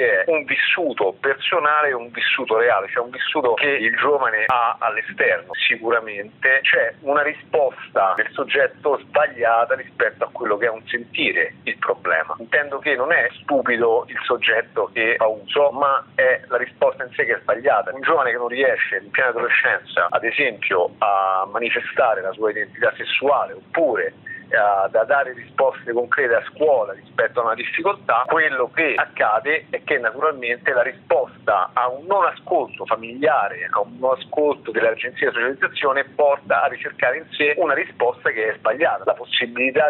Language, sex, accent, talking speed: Italian, male, native, 165 wpm